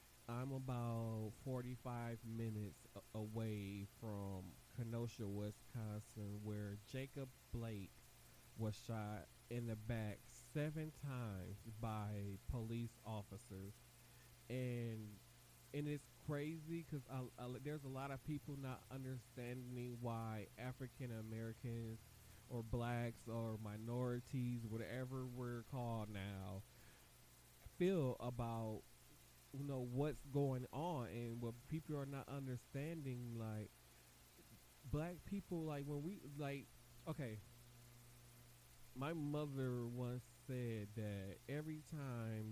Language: English